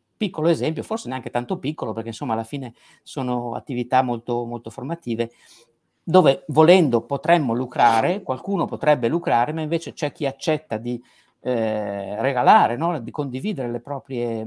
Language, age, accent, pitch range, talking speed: Italian, 50-69, native, 120-165 Hz, 140 wpm